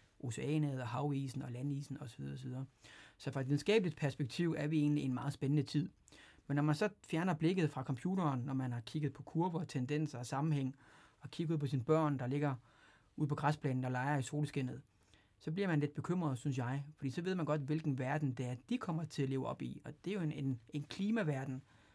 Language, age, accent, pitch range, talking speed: English, 30-49, Danish, 125-155 Hz, 225 wpm